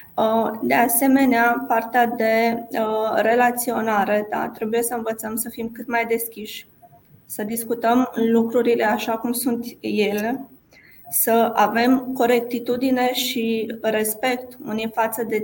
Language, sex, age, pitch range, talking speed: Romanian, female, 20-39, 220-235 Hz, 115 wpm